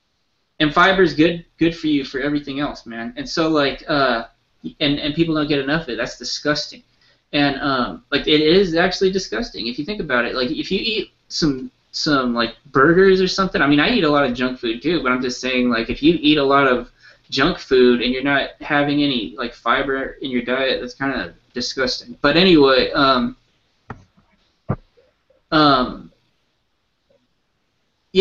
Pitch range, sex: 130-170 Hz, male